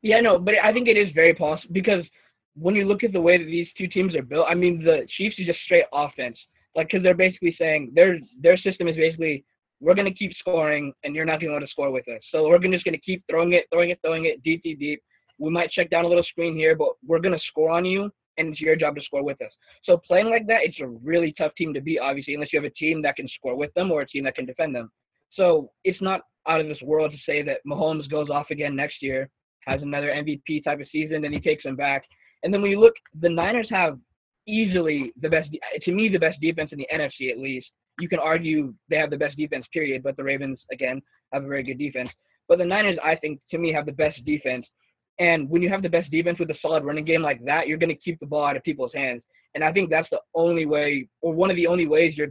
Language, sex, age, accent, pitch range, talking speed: English, male, 20-39, American, 145-175 Hz, 270 wpm